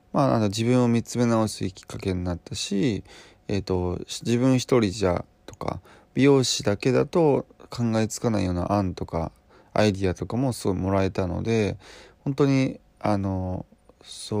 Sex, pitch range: male, 90-120 Hz